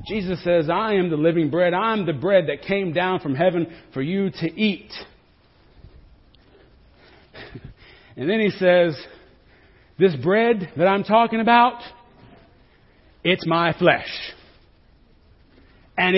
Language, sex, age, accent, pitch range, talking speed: English, male, 40-59, American, 160-230 Hz, 120 wpm